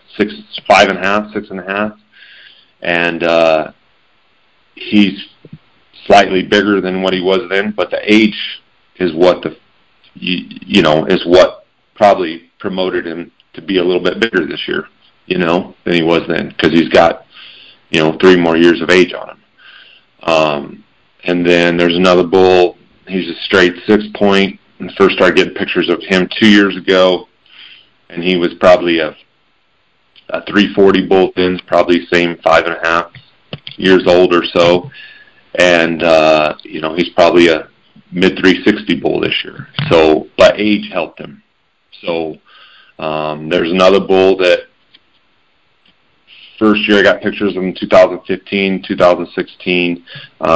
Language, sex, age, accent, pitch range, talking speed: English, male, 40-59, American, 85-95 Hz, 155 wpm